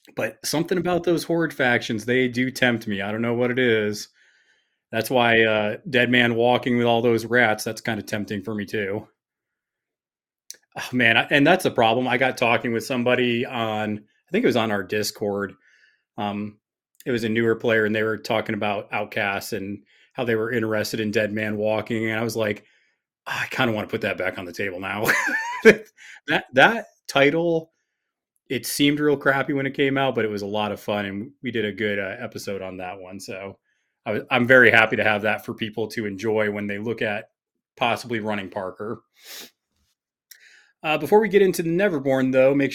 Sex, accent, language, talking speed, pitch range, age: male, American, English, 205 wpm, 110-135 Hz, 30-49